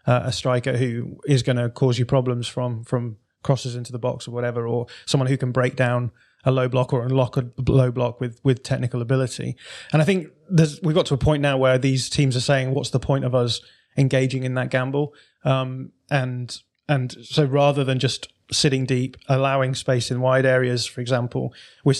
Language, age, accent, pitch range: English, 20-39, British, 125-140 Hz